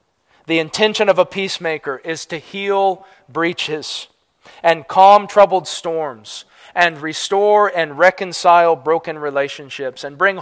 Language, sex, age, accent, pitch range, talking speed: English, male, 40-59, American, 125-155 Hz, 120 wpm